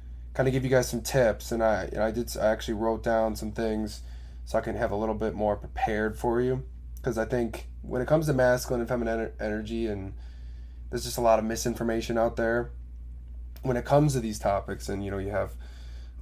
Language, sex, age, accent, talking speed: English, male, 20-39, American, 230 wpm